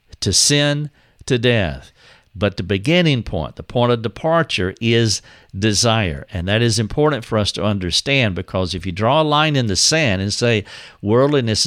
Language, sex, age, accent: English, male, 50-69, American